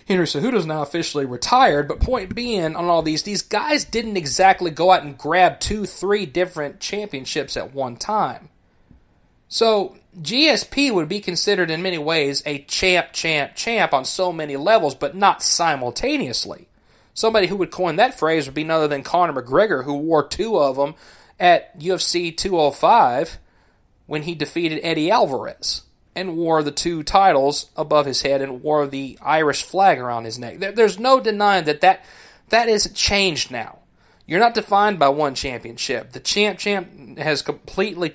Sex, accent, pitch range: male, American, 145-200 Hz